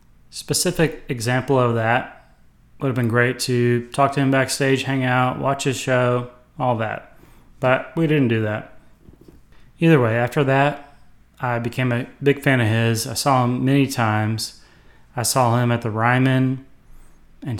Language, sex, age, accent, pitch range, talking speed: English, male, 30-49, American, 115-130 Hz, 165 wpm